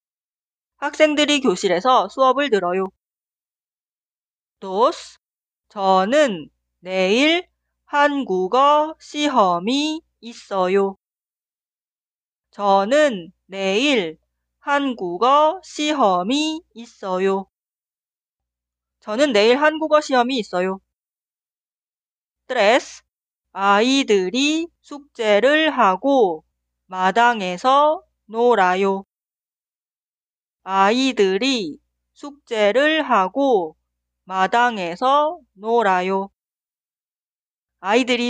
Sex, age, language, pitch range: female, 30-49, Korean, 190-290 Hz